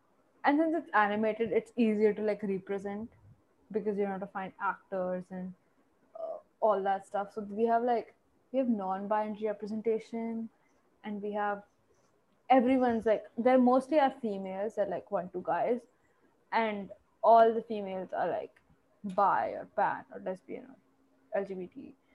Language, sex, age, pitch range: Hindi, female, 10-29, 200-230 Hz